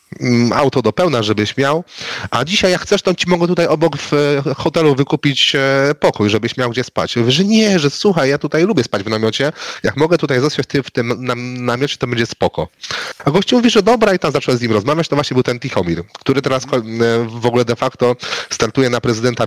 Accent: native